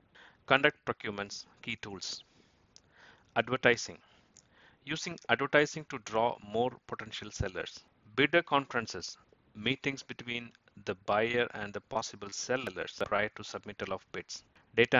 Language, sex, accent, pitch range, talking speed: English, male, Indian, 105-130 Hz, 110 wpm